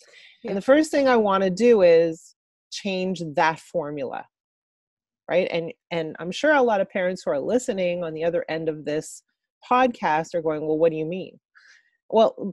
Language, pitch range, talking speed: English, 170-225 Hz, 185 wpm